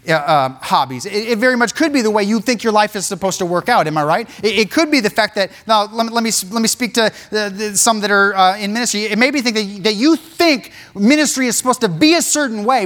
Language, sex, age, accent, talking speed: English, male, 30-49, American, 285 wpm